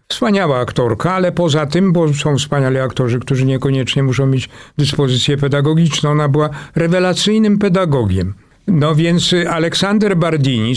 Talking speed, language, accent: 130 wpm, Polish, native